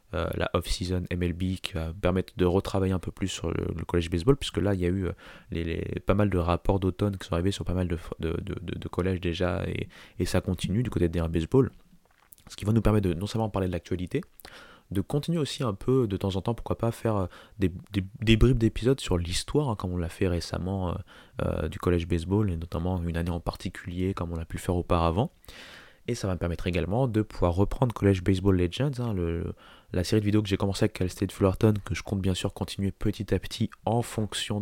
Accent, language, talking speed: French, French, 245 wpm